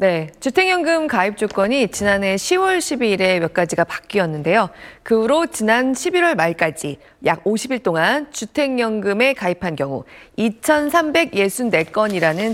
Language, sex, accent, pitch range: Korean, female, native, 185-295 Hz